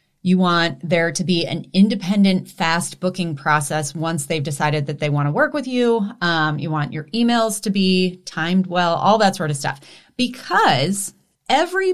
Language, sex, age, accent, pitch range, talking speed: English, female, 30-49, American, 165-240 Hz, 180 wpm